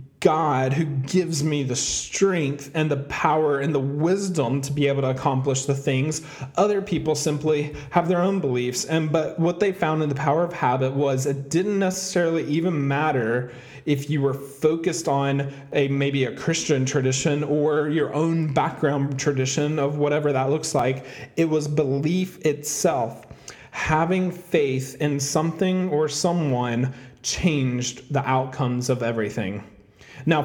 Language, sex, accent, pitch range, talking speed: English, male, American, 140-165 Hz, 155 wpm